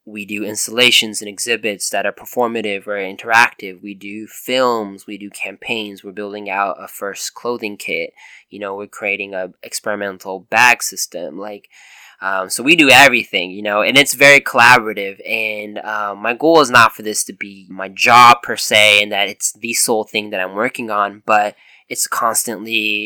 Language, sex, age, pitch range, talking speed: English, male, 10-29, 100-120 Hz, 180 wpm